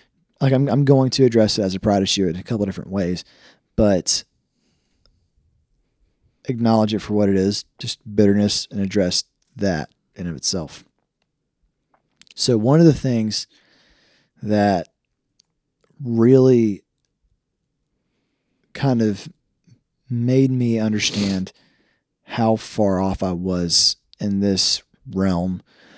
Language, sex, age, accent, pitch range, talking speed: English, male, 20-39, American, 95-120 Hz, 120 wpm